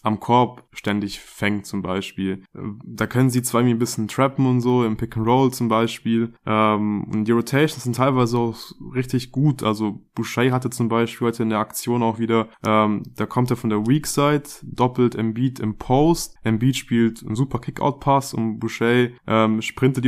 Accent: German